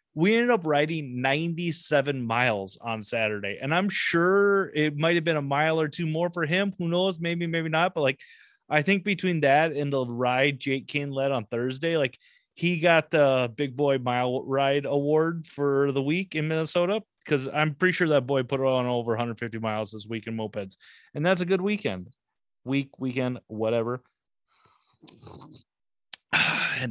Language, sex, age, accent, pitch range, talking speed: English, male, 30-49, American, 125-175 Hz, 180 wpm